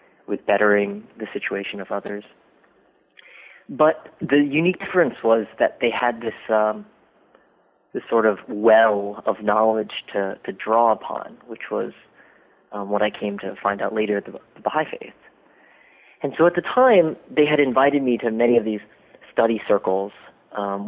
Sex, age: male, 30-49